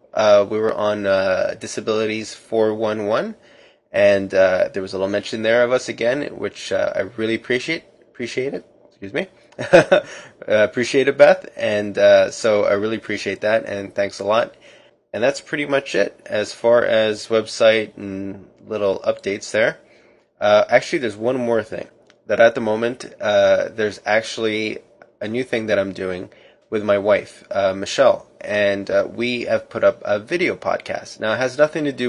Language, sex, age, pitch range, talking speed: English, male, 20-39, 100-120 Hz, 175 wpm